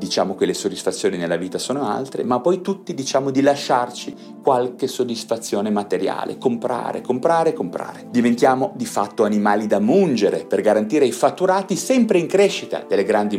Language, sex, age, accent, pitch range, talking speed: Italian, male, 40-59, native, 125-195 Hz, 155 wpm